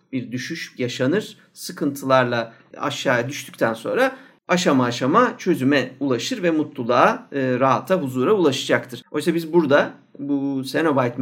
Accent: native